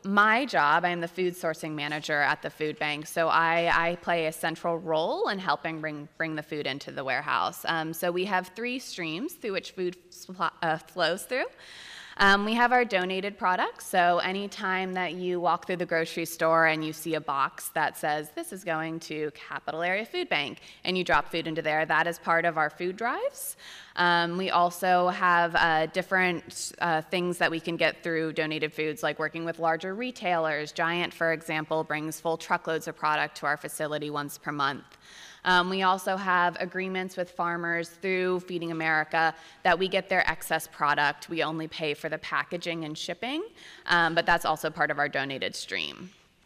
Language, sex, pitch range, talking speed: English, female, 160-185 Hz, 195 wpm